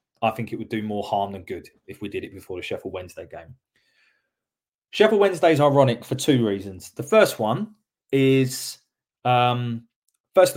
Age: 20-39